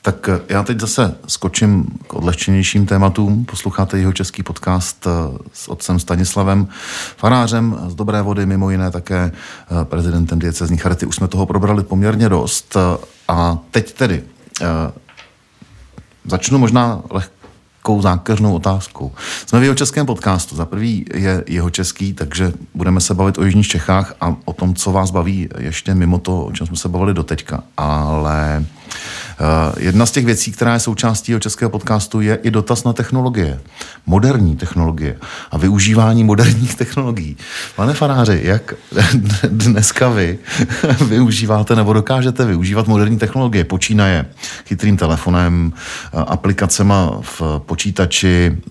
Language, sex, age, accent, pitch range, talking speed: Czech, male, 40-59, native, 90-110 Hz, 135 wpm